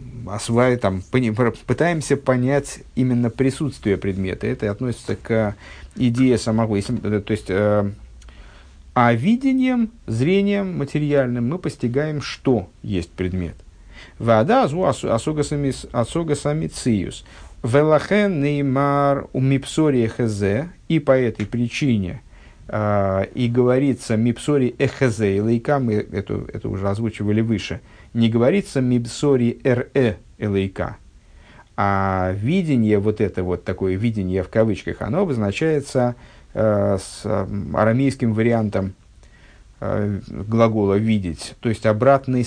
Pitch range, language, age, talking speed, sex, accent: 100-135 Hz, Russian, 50-69, 100 wpm, male, native